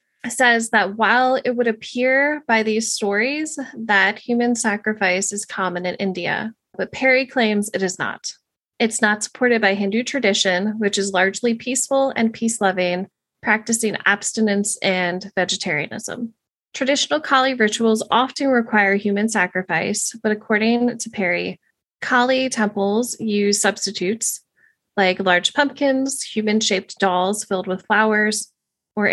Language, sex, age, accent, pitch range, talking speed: English, female, 20-39, American, 195-240 Hz, 130 wpm